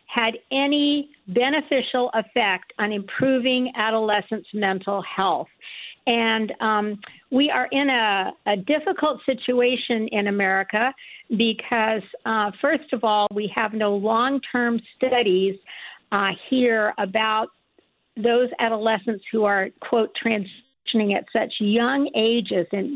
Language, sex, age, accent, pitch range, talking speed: English, female, 50-69, American, 210-260 Hz, 115 wpm